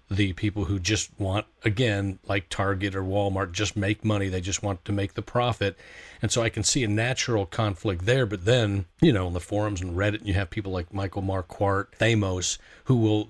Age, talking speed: 40-59, 210 wpm